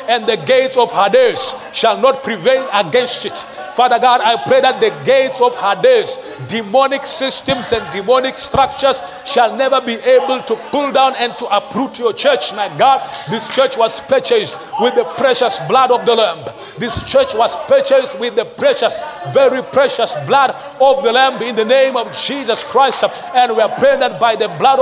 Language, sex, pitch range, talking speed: English, male, 240-275 Hz, 185 wpm